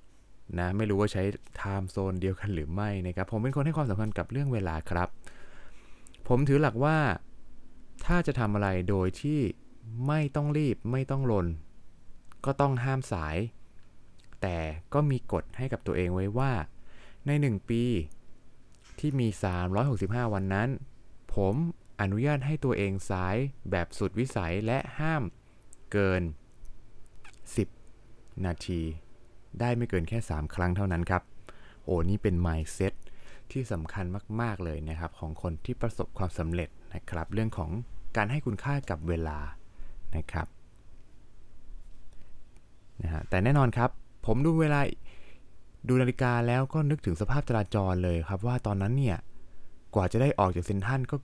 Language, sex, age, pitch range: Thai, male, 20-39, 90-120 Hz